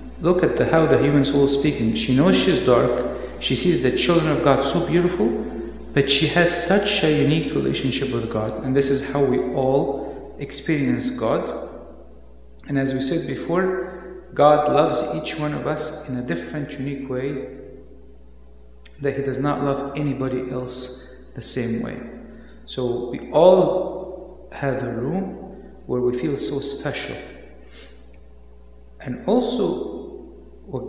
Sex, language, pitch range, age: male, English, 125-155 Hz, 50-69